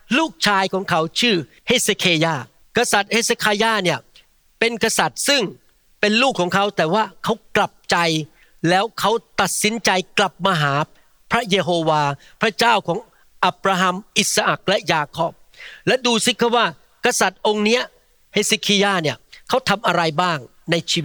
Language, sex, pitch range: Thai, male, 155-220 Hz